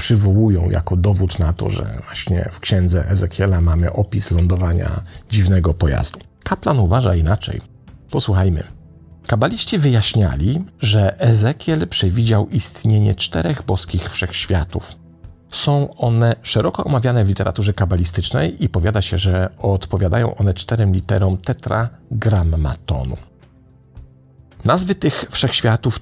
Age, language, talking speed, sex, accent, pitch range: 40-59, Polish, 110 wpm, male, native, 90-115 Hz